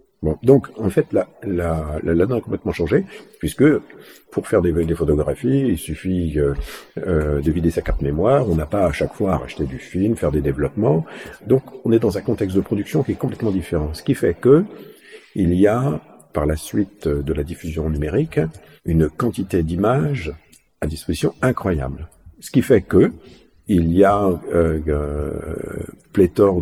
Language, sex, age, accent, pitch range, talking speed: French, male, 50-69, French, 80-100 Hz, 185 wpm